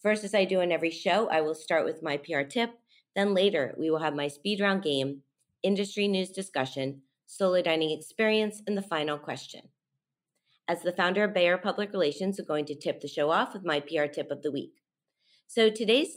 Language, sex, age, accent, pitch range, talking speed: English, female, 30-49, American, 160-205 Hz, 210 wpm